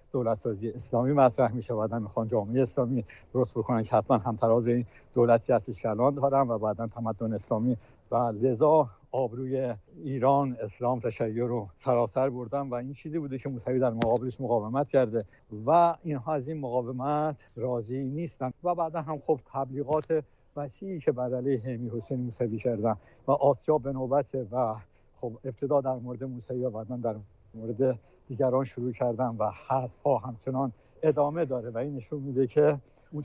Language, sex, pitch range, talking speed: Persian, male, 115-135 Hz, 155 wpm